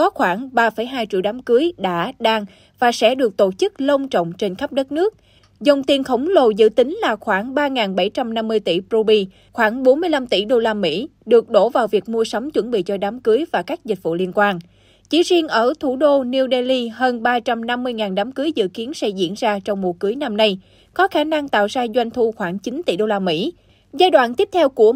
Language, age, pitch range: Vietnamese, 20-39, 205-280 Hz